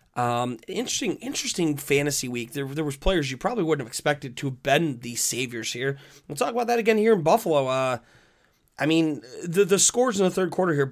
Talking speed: 215 wpm